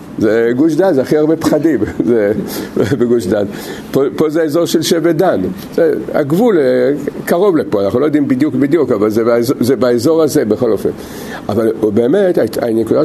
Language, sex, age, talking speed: Hebrew, male, 50-69, 165 wpm